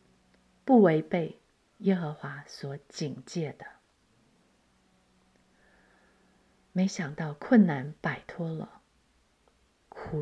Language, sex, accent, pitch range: Chinese, female, native, 155-200 Hz